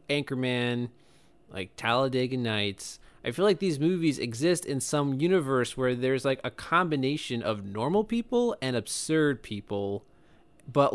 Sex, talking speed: male, 135 wpm